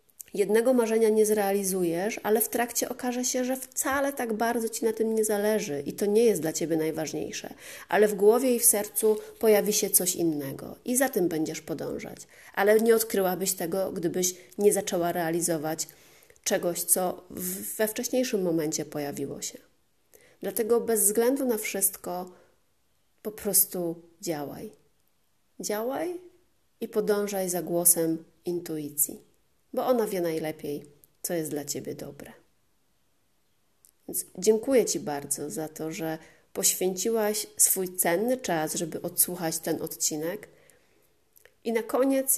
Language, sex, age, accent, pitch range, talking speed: Polish, female, 30-49, native, 165-225 Hz, 135 wpm